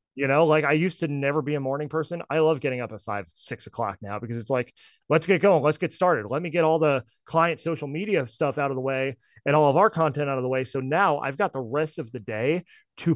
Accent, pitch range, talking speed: American, 130-165 Hz, 280 wpm